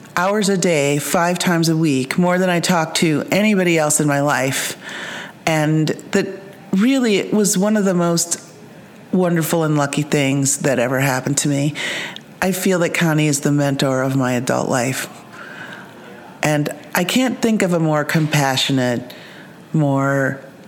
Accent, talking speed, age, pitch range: American, 155 wpm, 40-59, 150-210 Hz